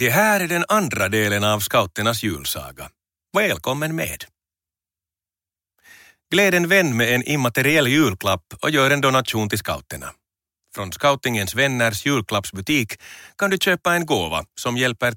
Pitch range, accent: 90-135 Hz, native